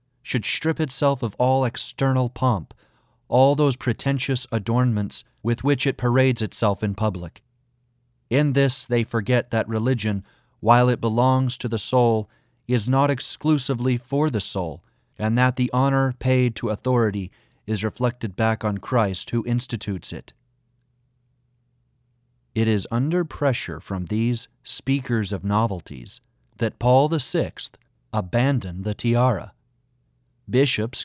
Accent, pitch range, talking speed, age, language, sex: American, 105-130 Hz, 130 wpm, 40-59, English, male